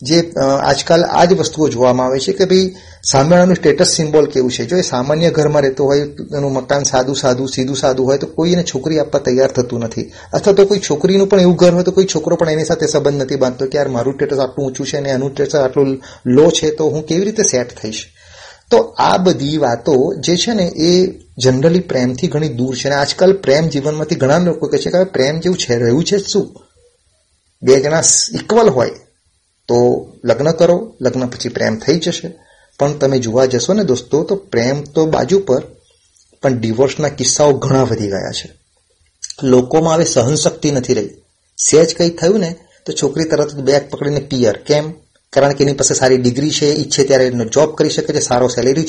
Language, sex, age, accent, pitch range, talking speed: Gujarati, male, 30-49, native, 130-160 Hz, 140 wpm